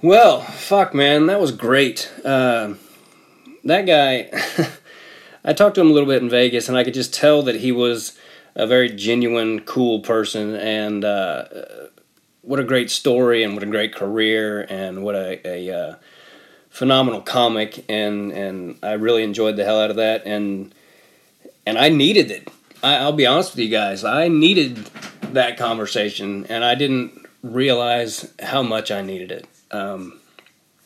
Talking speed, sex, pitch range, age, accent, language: 165 wpm, male, 110-160 Hz, 30-49, American, English